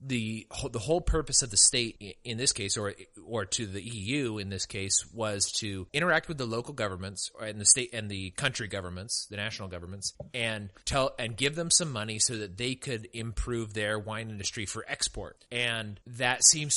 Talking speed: 195 wpm